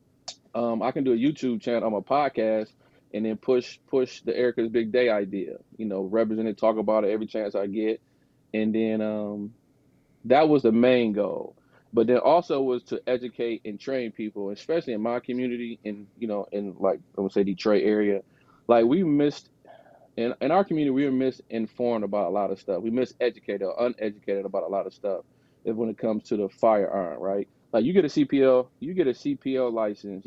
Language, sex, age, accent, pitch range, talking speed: English, male, 20-39, American, 105-125 Hz, 200 wpm